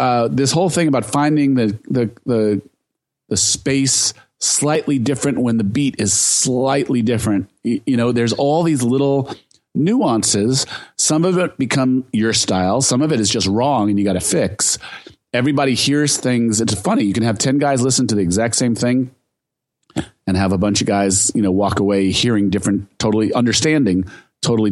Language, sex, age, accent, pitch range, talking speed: English, male, 40-59, American, 105-130 Hz, 175 wpm